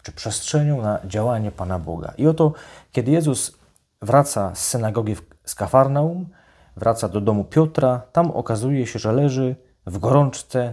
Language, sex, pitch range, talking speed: Polish, male, 100-140 Hz, 145 wpm